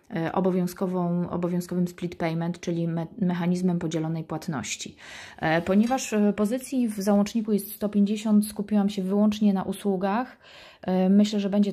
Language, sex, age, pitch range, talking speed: Polish, female, 30-49, 175-205 Hz, 120 wpm